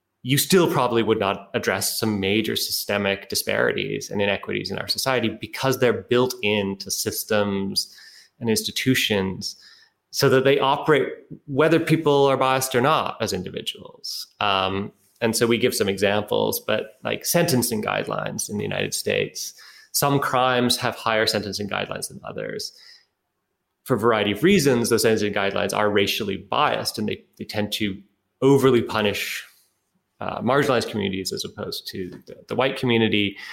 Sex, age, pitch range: male, 20-39, 100-130 Hz